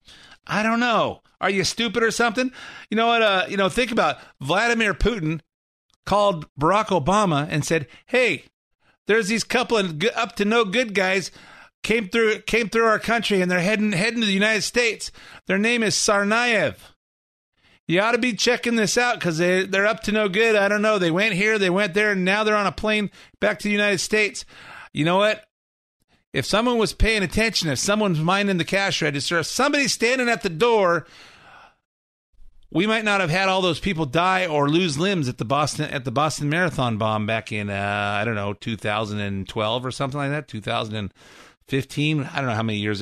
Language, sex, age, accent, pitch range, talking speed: English, male, 50-69, American, 130-215 Hz, 200 wpm